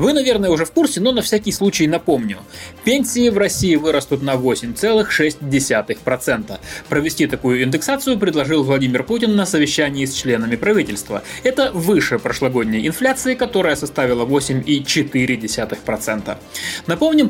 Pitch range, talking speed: 140-220 Hz, 130 wpm